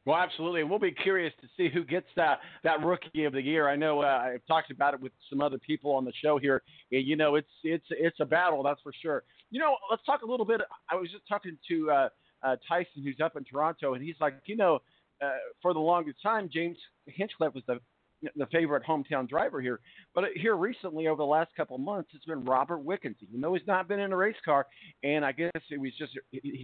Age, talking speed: 50-69, 240 wpm